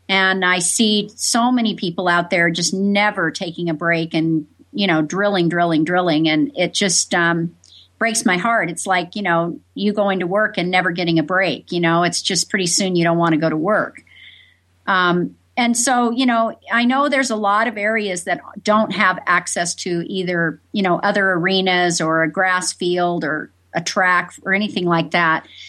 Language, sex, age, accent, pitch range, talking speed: English, female, 50-69, American, 175-225 Hz, 200 wpm